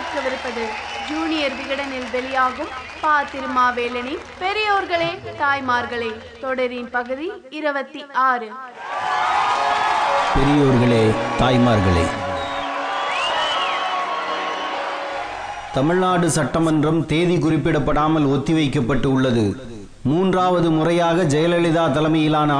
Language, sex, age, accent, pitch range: Tamil, male, 30-49, native, 150-185 Hz